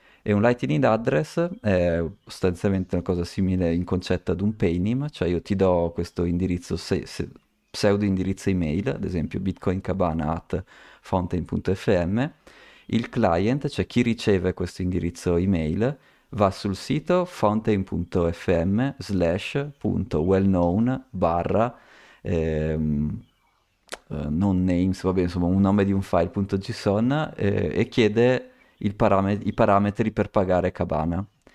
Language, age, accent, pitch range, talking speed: Italian, 30-49, native, 90-110 Hz, 115 wpm